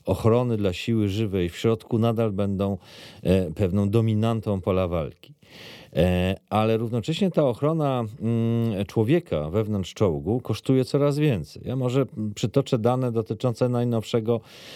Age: 40-59